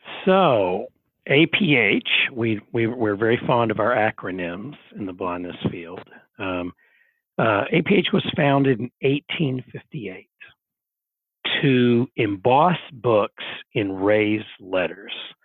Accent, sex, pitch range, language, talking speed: American, male, 105-130 Hz, English, 110 wpm